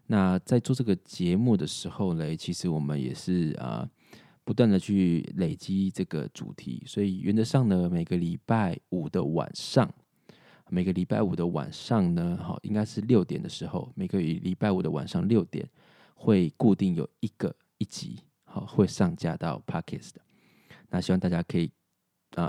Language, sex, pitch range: Chinese, male, 90-130 Hz